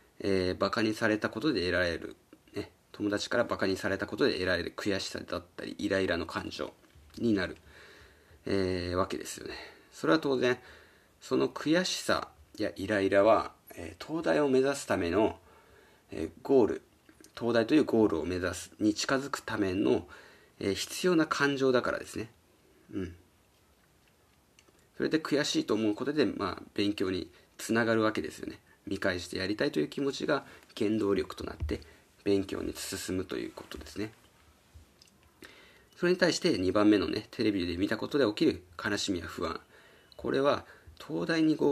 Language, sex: Japanese, male